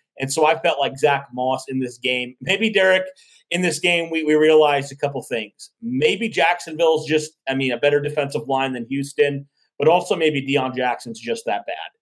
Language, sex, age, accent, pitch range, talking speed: English, male, 30-49, American, 130-165 Hz, 200 wpm